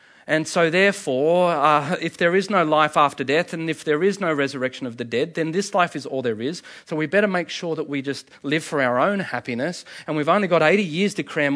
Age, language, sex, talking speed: 40-59, English, male, 250 wpm